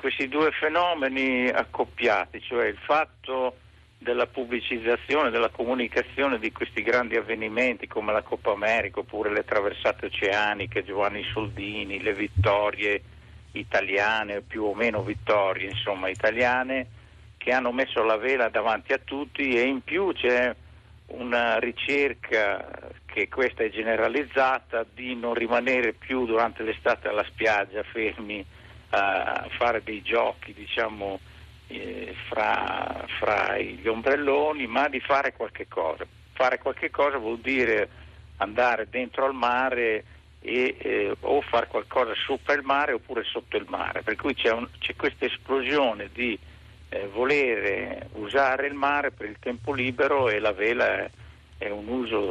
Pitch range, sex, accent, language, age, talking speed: 105-135 Hz, male, native, Italian, 50-69, 140 wpm